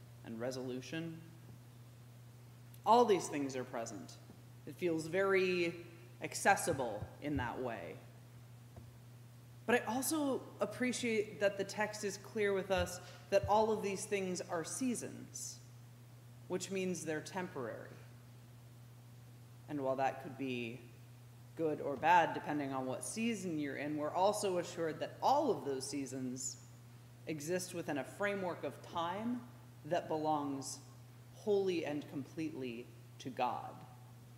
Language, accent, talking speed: English, American, 125 wpm